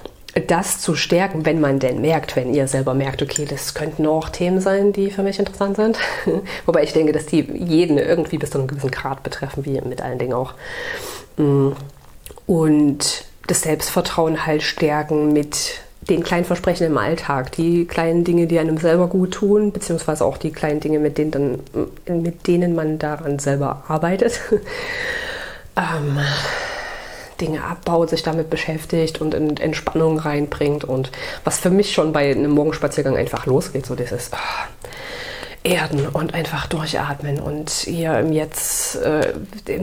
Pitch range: 145-170 Hz